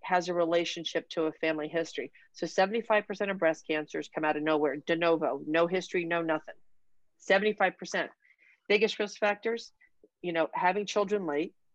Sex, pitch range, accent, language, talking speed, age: female, 165-205 Hz, American, English, 160 wpm, 40-59